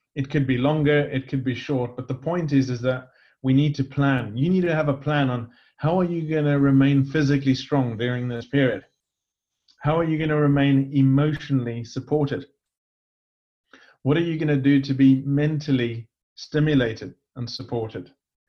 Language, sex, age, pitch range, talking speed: English, male, 30-49, 125-150 Hz, 180 wpm